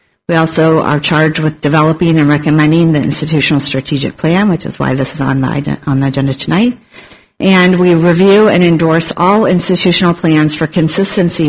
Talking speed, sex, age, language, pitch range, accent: 170 wpm, female, 50-69, English, 145-175 Hz, American